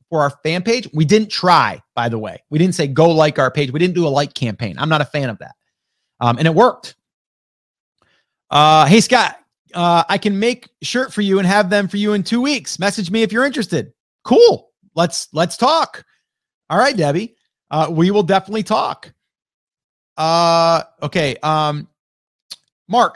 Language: English